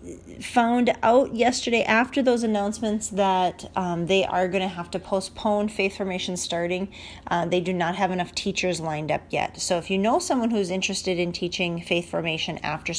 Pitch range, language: 160-200 Hz, English